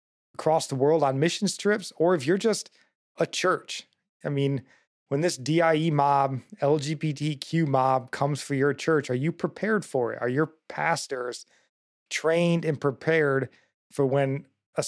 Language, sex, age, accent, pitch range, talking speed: English, male, 30-49, American, 130-155 Hz, 155 wpm